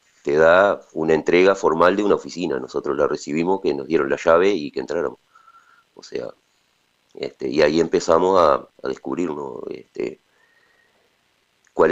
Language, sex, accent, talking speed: Spanish, male, Argentinian, 155 wpm